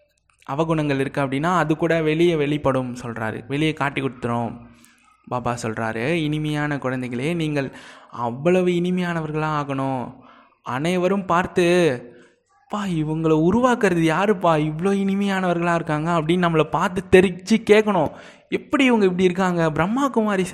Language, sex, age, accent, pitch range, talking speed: Tamil, male, 20-39, native, 140-180 Hz, 115 wpm